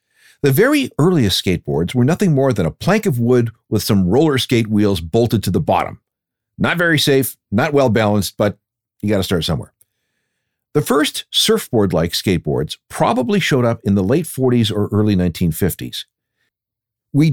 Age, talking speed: 50-69, 165 wpm